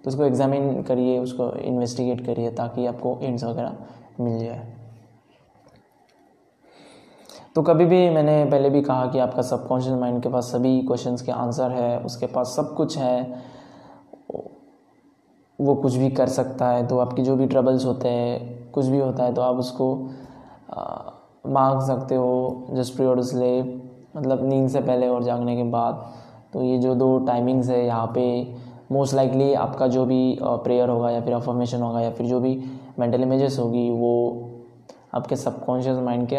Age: 20-39